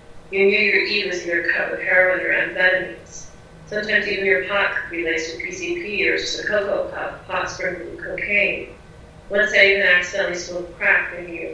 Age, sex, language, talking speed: 30-49, female, English, 205 wpm